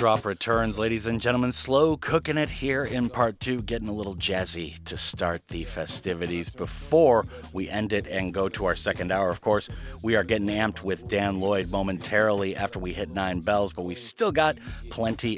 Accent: American